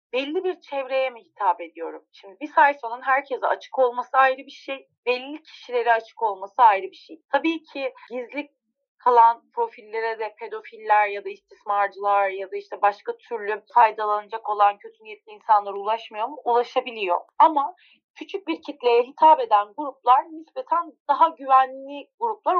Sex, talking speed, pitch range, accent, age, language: female, 150 wpm, 245-410 Hz, native, 30-49, Turkish